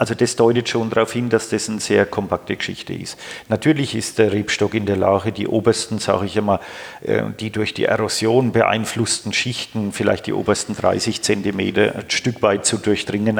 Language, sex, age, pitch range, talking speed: German, male, 50-69, 100-115 Hz, 185 wpm